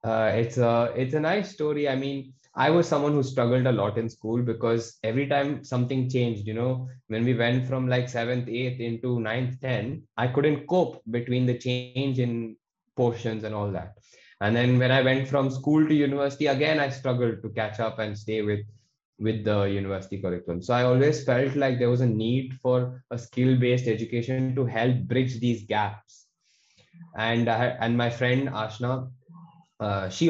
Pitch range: 115-135 Hz